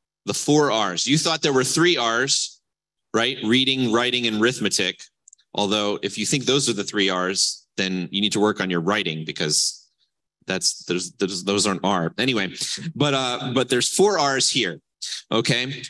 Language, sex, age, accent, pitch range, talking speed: English, male, 30-49, American, 110-145 Hz, 175 wpm